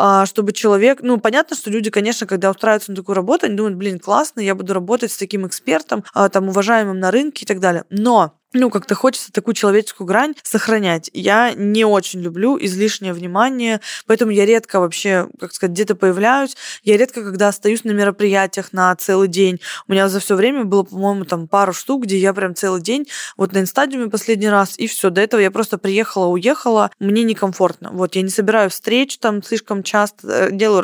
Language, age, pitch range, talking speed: Russian, 20-39, 195-230 Hz, 195 wpm